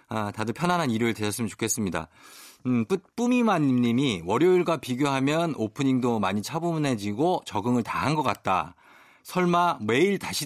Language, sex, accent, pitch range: Korean, male, native, 110-185 Hz